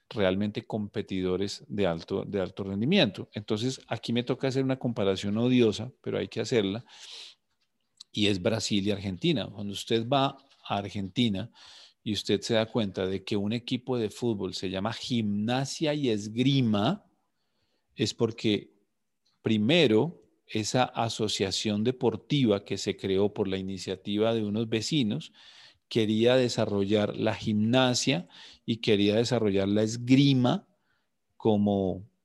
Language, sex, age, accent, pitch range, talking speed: Spanish, male, 40-59, Colombian, 100-120 Hz, 130 wpm